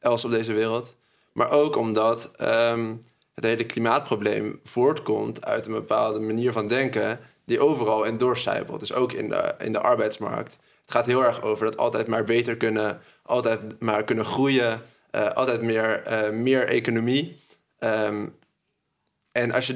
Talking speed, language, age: 150 wpm, Dutch, 20-39